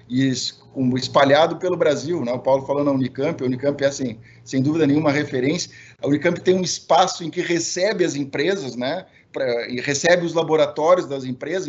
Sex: male